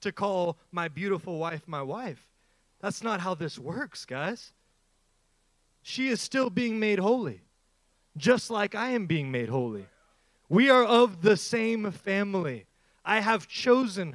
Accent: American